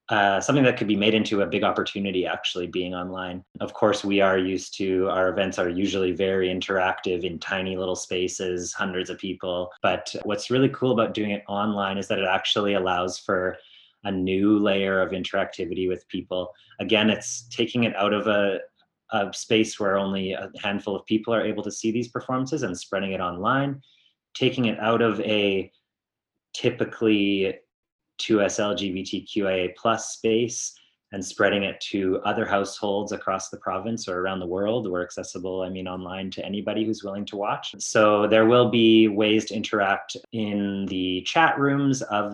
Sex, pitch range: male, 95-110 Hz